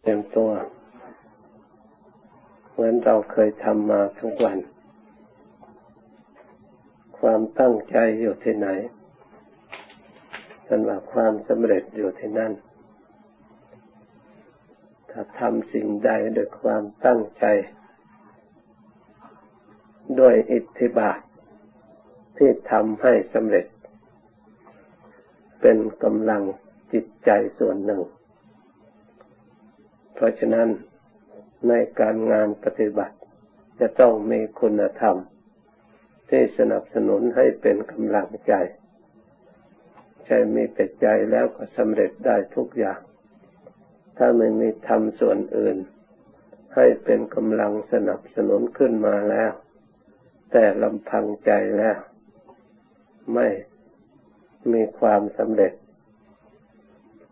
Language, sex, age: Thai, male, 60-79